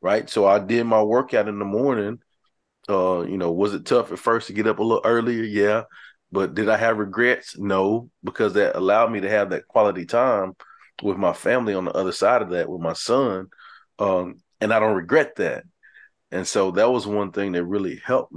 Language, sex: English, male